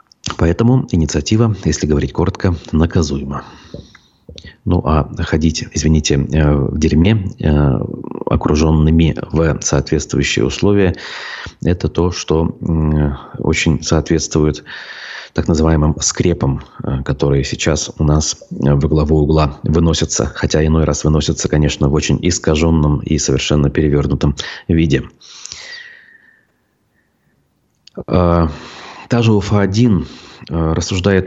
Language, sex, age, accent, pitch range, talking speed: Russian, male, 30-49, native, 75-95 Hz, 90 wpm